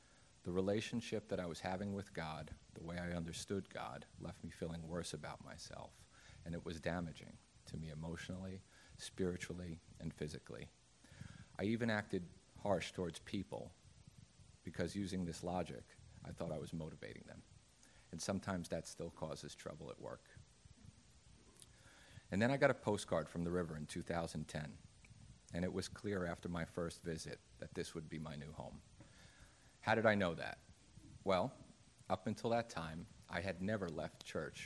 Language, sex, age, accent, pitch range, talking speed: English, male, 40-59, American, 80-100 Hz, 165 wpm